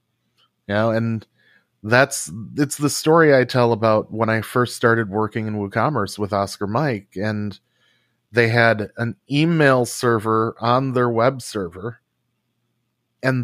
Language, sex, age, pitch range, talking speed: English, male, 30-49, 115-145 Hz, 140 wpm